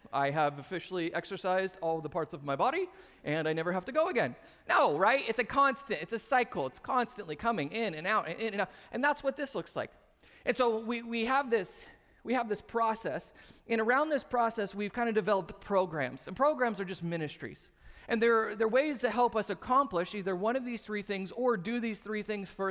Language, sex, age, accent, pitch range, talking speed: English, male, 30-49, American, 170-230 Hz, 225 wpm